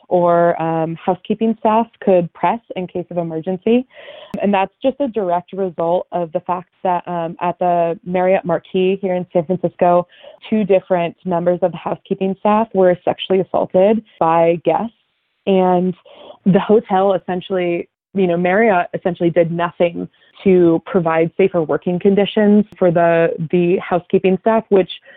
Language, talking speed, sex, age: English, 150 wpm, female, 20-39